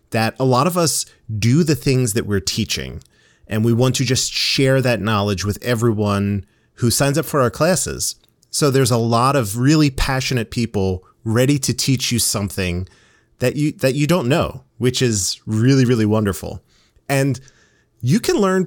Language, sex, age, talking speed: English, male, 30-49, 175 wpm